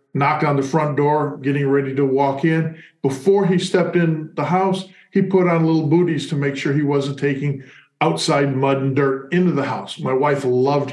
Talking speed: 205 wpm